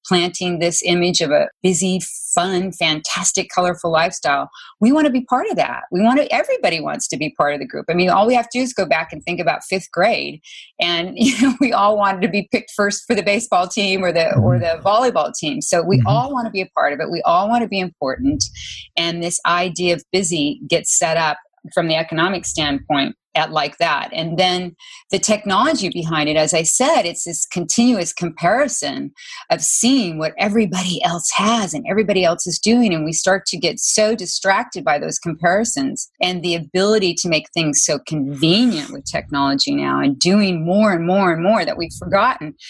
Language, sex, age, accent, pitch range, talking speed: English, female, 40-59, American, 165-205 Hz, 205 wpm